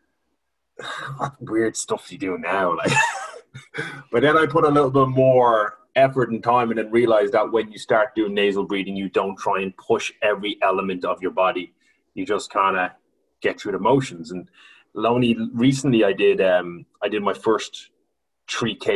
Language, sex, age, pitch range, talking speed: English, male, 30-49, 105-135 Hz, 175 wpm